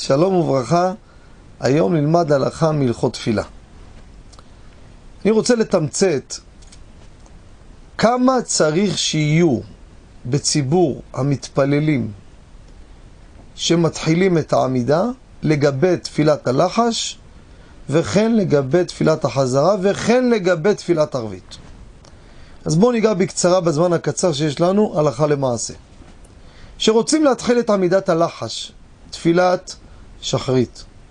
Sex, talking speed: male, 90 wpm